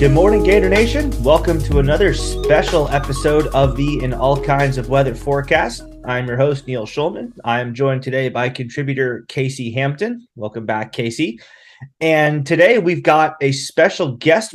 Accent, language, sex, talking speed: American, English, male, 160 wpm